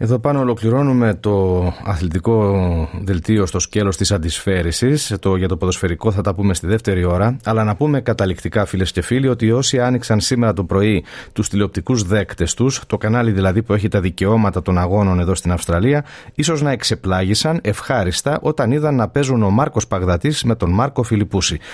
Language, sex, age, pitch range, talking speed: Greek, male, 40-59, 95-125 Hz, 175 wpm